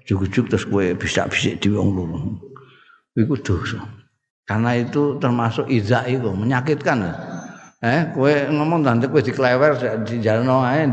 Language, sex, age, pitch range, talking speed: Indonesian, male, 50-69, 115-150 Hz, 120 wpm